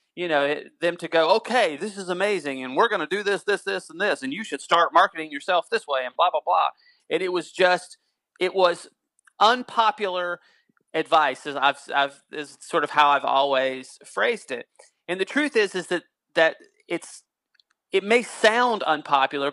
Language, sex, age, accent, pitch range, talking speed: English, male, 30-49, American, 145-195 Hz, 195 wpm